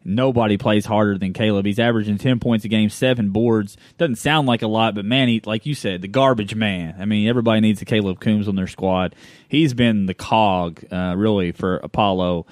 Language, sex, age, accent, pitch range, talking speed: English, male, 20-39, American, 100-130 Hz, 215 wpm